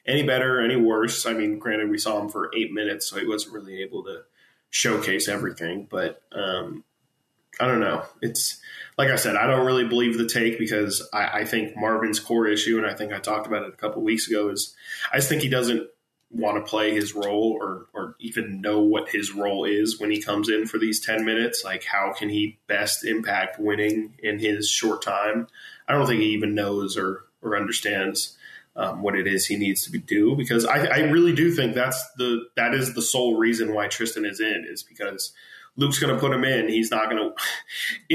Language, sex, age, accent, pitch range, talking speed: English, male, 20-39, American, 105-130 Hz, 220 wpm